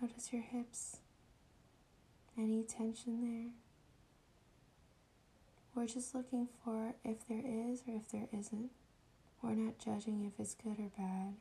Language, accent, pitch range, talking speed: English, American, 195-225 Hz, 130 wpm